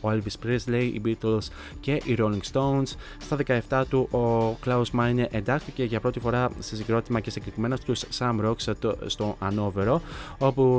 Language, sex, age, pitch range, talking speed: Greek, male, 20-39, 110-130 Hz, 165 wpm